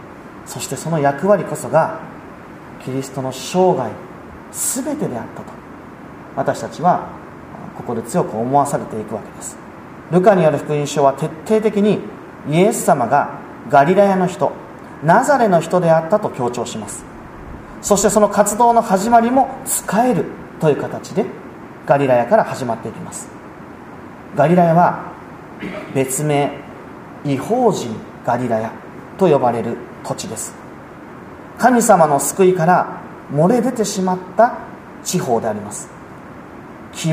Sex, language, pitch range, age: male, Japanese, 155-240 Hz, 40-59